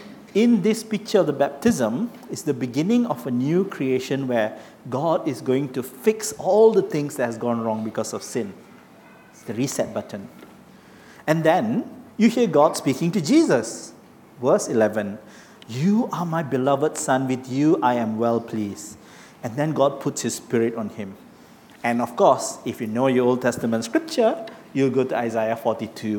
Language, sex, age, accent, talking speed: English, male, 50-69, Malaysian, 175 wpm